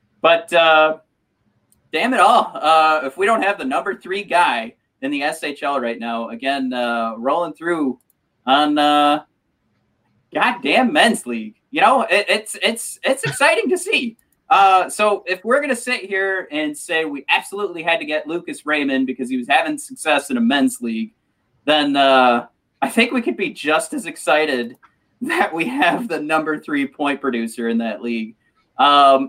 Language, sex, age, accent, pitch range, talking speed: English, male, 30-49, American, 140-230 Hz, 175 wpm